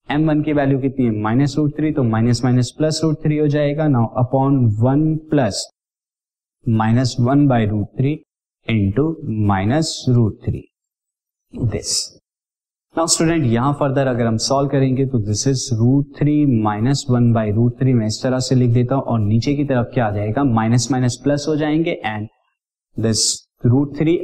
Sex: male